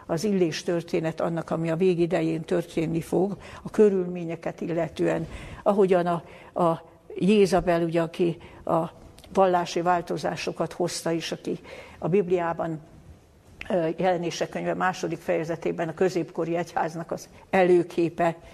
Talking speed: 110 wpm